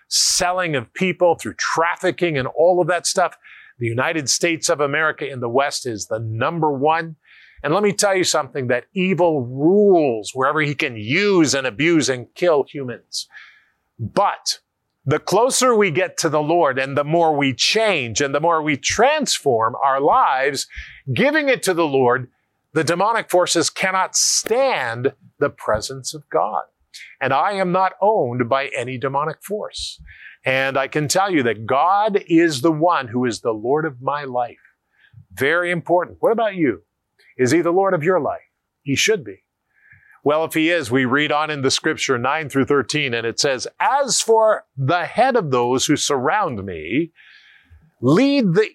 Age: 50-69